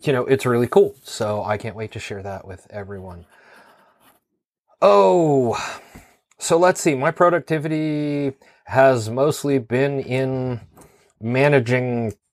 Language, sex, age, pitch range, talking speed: English, male, 30-49, 100-125 Hz, 120 wpm